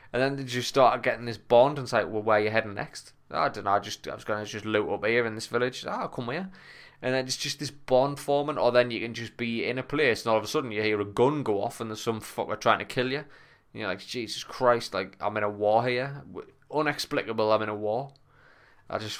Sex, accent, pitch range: male, British, 105-125 Hz